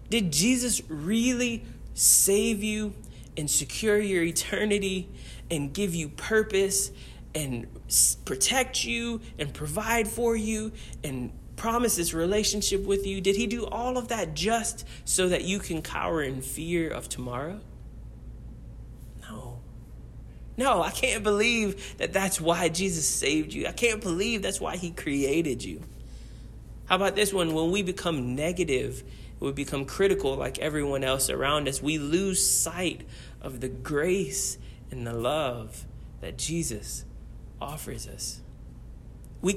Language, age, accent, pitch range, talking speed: English, 30-49, American, 130-195 Hz, 140 wpm